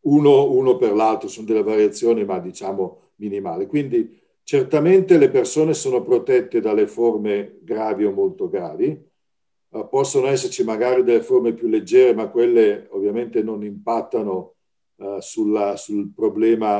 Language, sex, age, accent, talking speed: Italian, male, 50-69, native, 140 wpm